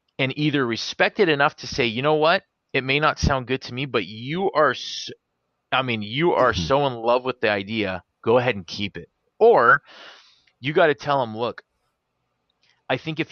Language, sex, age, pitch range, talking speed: English, male, 30-49, 115-150 Hz, 205 wpm